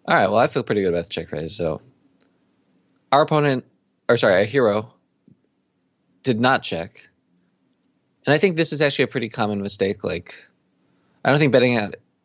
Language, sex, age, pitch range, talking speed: English, male, 20-39, 95-125 Hz, 175 wpm